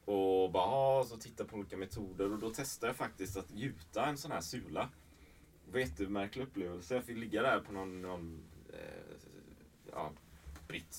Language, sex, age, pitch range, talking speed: Swedish, male, 30-49, 80-110 Hz, 175 wpm